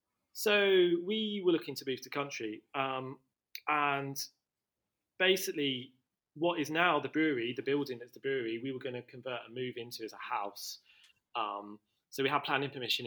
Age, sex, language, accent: 30-49, male, English, British